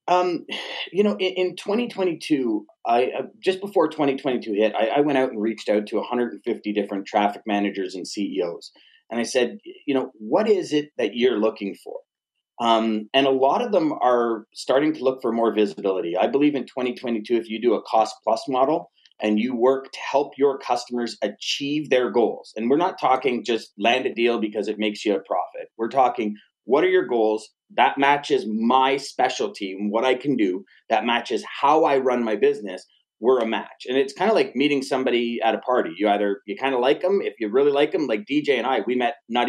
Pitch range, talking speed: 115-185 Hz, 215 wpm